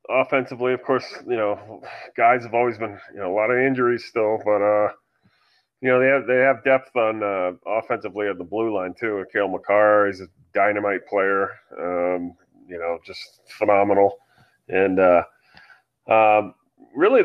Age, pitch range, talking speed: 30-49, 95-125 Hz, 170 wpm